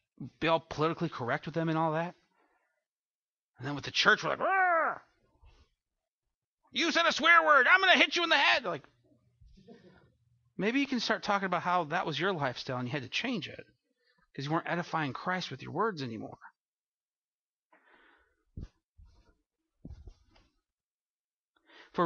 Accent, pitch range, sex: American, 130-215 Hz, male